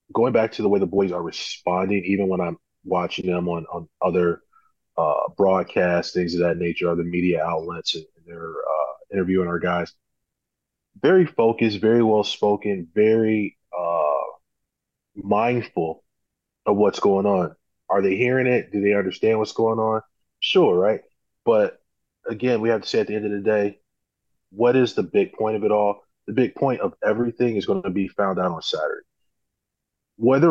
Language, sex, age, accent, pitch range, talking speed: English, male, 20-39, American, 90-110 Hz, 175 wpm